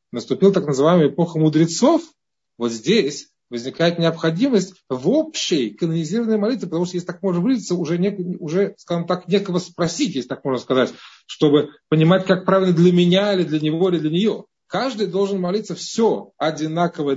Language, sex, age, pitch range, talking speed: Russian, male, 30-49, 150-200 Hz, 165 wpm